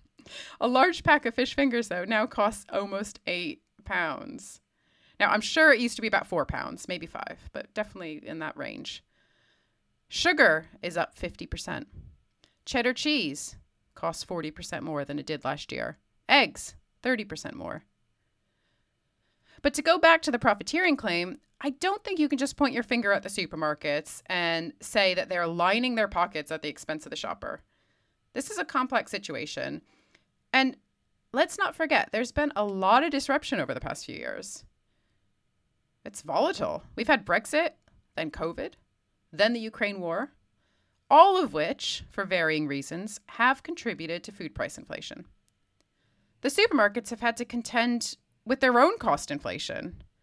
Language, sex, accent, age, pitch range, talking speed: English, female, American, 30-49, 185-280 Hz, 160 wpm